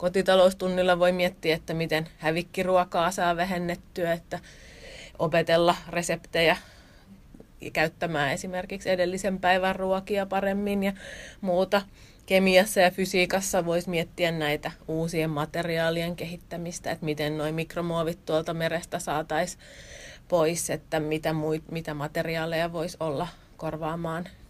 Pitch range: 160-185 Hz